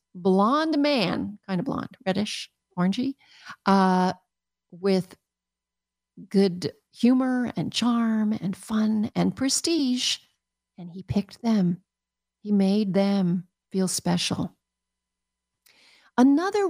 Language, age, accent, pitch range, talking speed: English, 50-69, American, 180-230 Hz, 95 wpm